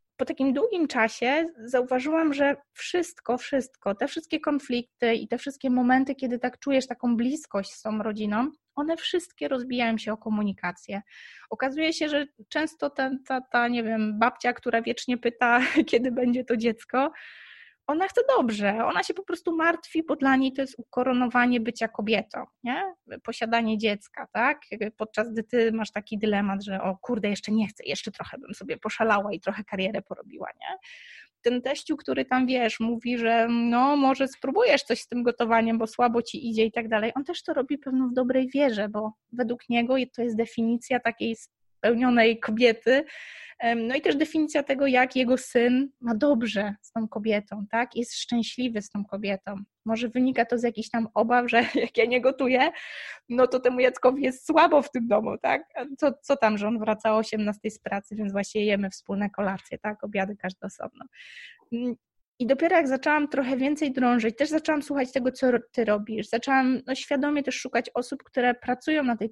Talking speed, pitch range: 180 wpm, 225-270 Hz